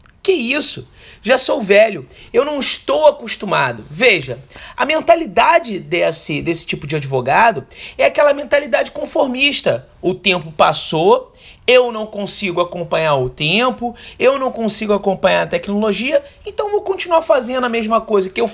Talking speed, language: 145 wpm, Portuguese